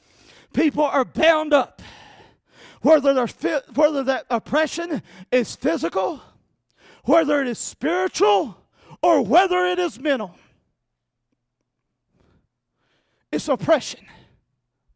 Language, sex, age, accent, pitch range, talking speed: English, male, 40-59, American, 225-280 Hz, 85 wpm